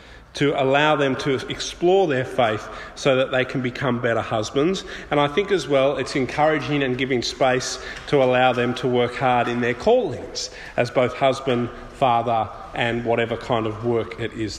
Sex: male